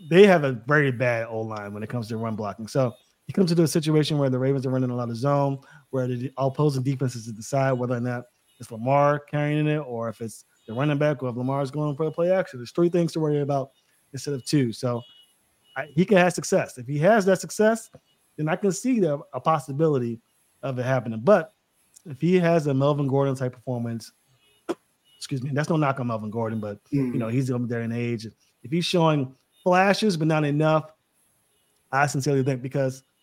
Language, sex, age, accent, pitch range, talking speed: English, male, 20-39, American, 125-160 Hz, 220 wpm